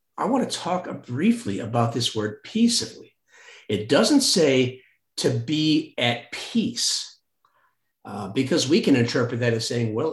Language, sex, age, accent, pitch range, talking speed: English, male, 50-69, American, 115-180 Hz, 150 wpm